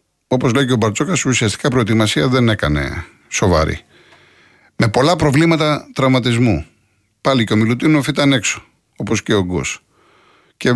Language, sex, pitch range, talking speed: Greek, male, 110-160 Hz, 140 wpm